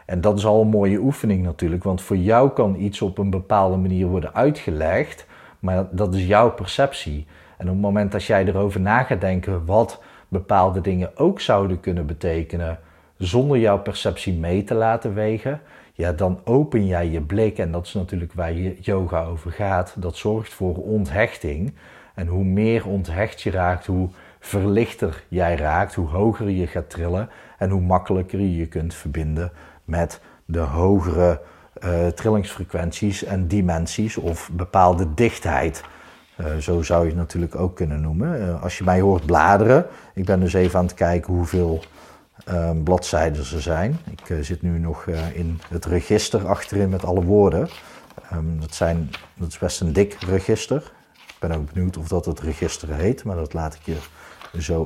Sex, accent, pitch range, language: male, Dutch, 85-100 Hz, Dutch